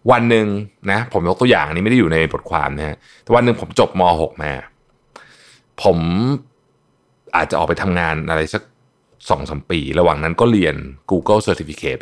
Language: Thai